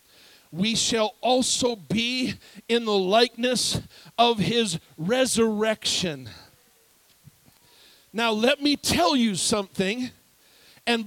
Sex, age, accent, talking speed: male, 50-69, American, 90 wpm